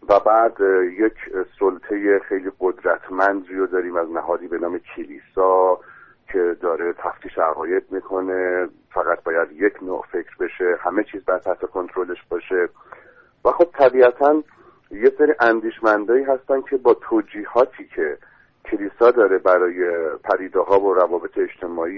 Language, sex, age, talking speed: Persian, male, 50-69, 130 wpm